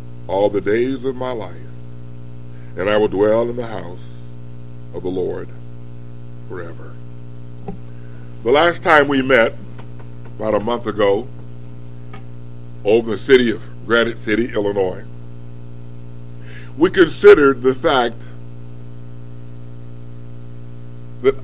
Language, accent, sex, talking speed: English, American, female, 105 wpm